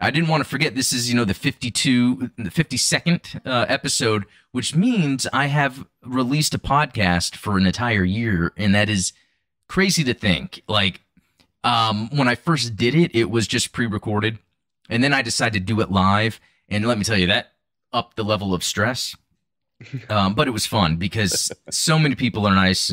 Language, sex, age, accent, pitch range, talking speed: English, male, 30-49, American, 95-130 Hz, 195 wpm